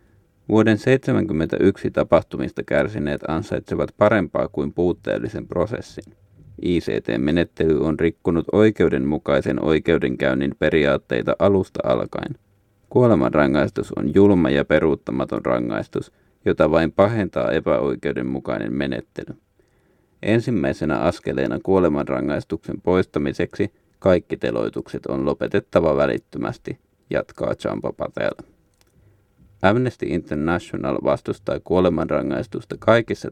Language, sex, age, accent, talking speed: Finnish, male, 30-49, native, 80 wpm